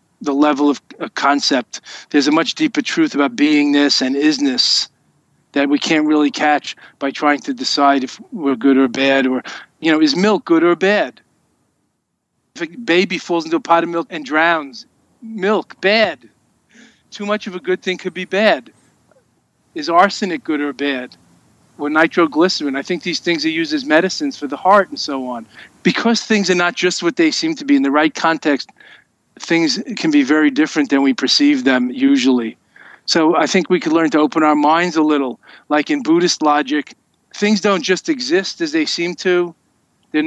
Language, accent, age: English, American, 40-59